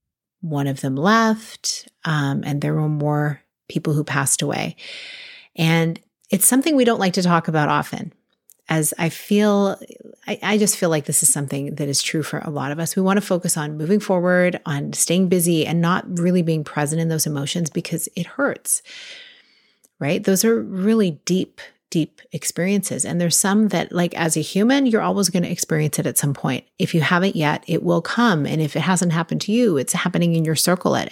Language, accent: English, American